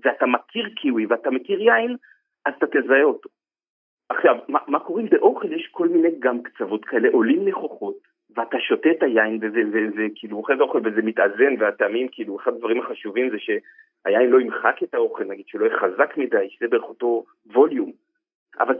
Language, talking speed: Hebrew, 180 wpm